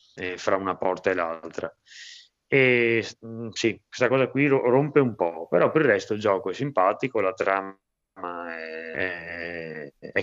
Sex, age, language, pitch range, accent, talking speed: male, 20-39, Italian, 90-110 Hz, native, 155 wpm